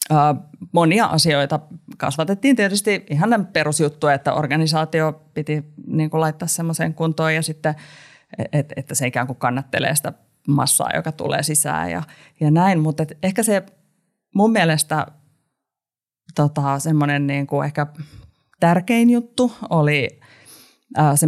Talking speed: 115 wpm